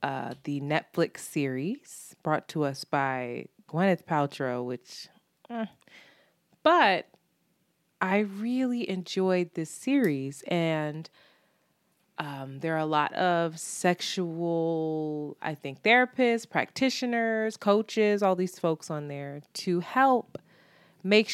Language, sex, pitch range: English, female, 155-205 Hz